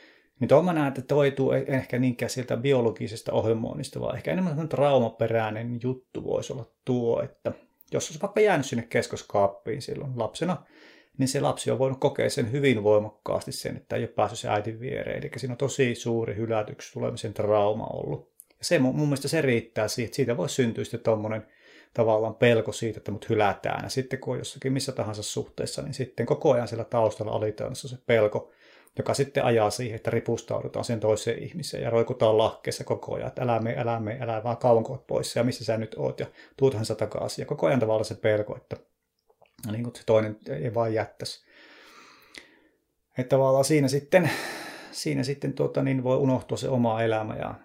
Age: 30-49